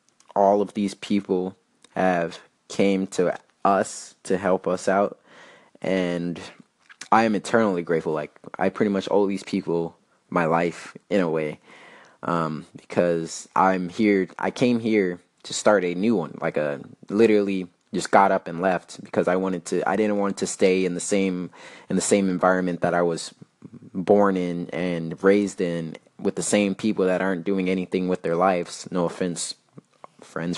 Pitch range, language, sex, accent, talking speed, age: 85-100 Hz, English, male, American, 170 wpm, 20-39